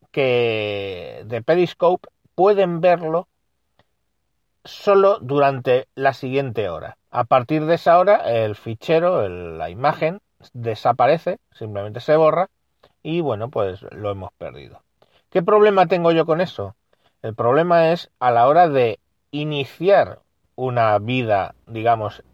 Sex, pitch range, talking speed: male, 115-155 Hz, 125 wpm